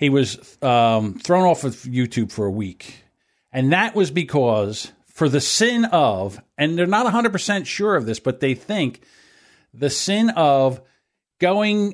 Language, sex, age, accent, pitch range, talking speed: English, male, 50-69, American, 120-165 Hz, 160 wpm